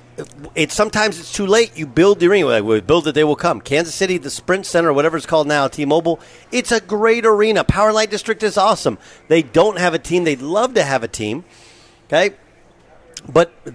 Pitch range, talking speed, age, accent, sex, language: 155-220 Hz, 205 wpm, 50-69, American, male, English